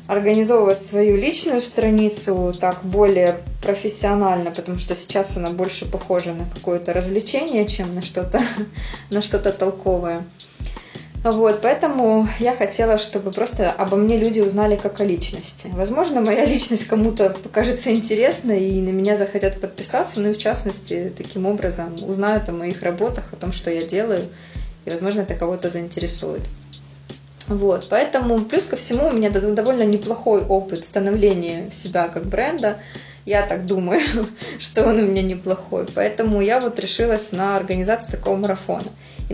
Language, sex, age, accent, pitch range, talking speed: Russian, female, 20-39, native, 180-215 Hz, 145 wpm